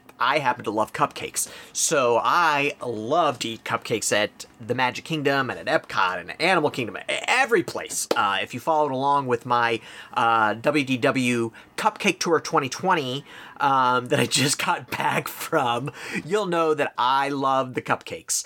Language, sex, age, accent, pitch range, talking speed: English, male, 30-49, American, 120-165 Hz, 160 wpm